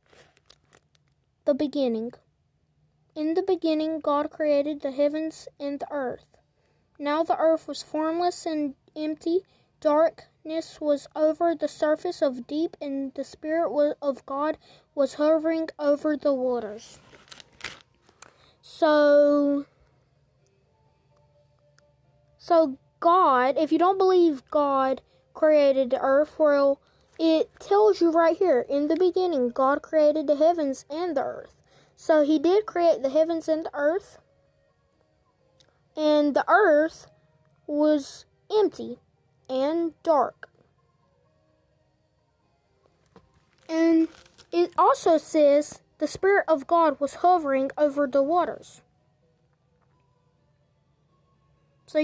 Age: 20-39